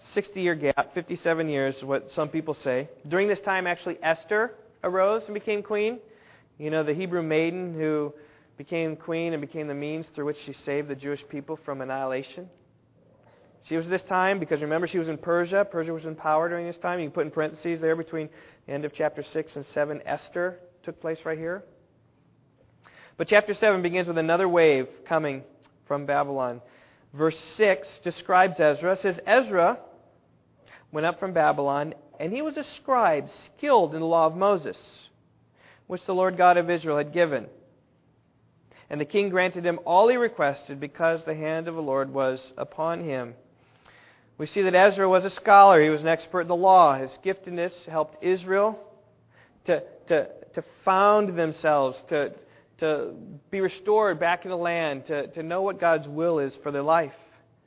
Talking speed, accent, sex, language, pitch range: 180 wpm, American, male, English, 150-185 Hz